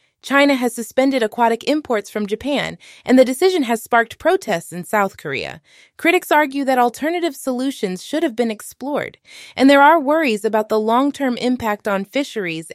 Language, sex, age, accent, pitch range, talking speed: English, female, 20-39, American, 210-270 Hz, 165 wpm